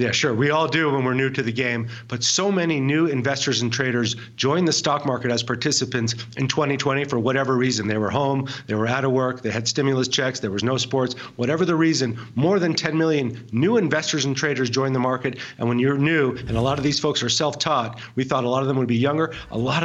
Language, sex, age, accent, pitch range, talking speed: English, male, 40-59, American, 125-150 Hz, 250 wpm